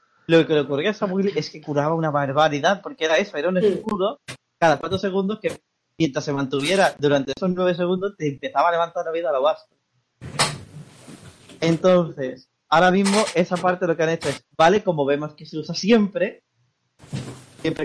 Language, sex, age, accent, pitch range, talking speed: Spanish, male, 20-39, Spanish, 140-180 Hz, 190 wpm